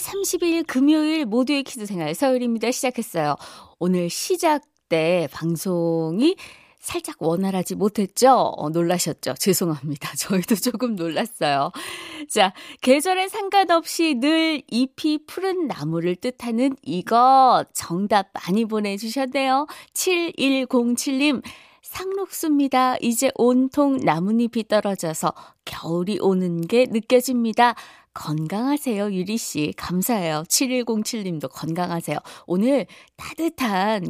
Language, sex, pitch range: Korean, female, 185-300 Hz